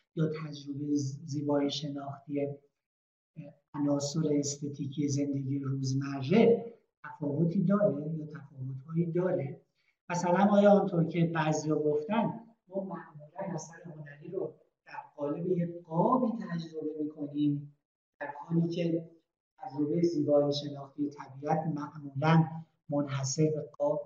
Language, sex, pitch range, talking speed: Persian, male, 145-190 Hz, 100 wpm